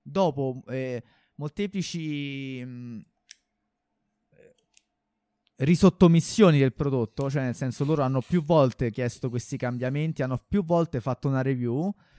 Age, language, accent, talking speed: 20-39, Italian, native, 115 wpm